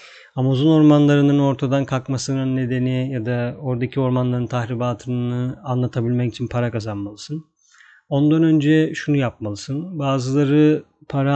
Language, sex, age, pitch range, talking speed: Turkish, male, 30-49, 125-150 Hz, 105 wpm